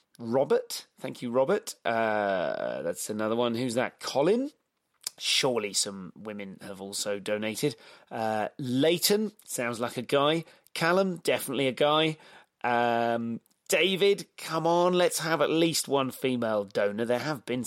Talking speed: 140 wpm